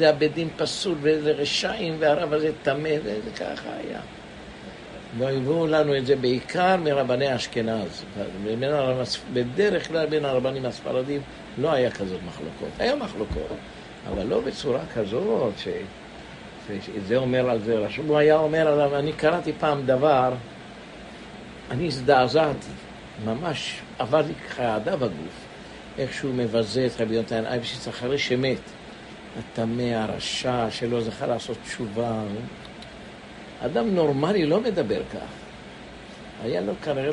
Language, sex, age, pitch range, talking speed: English, male, 60-79, 120-155 Hz, 125 wpm